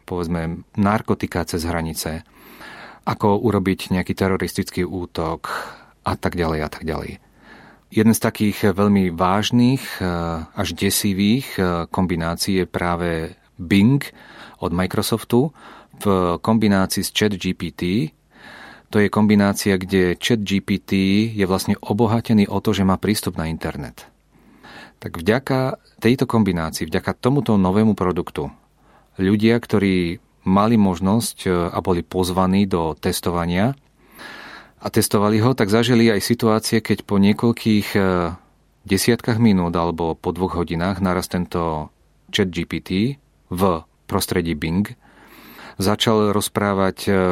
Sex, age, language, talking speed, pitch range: male, 40-59, Czech, 115 wpm, 90-105 Hz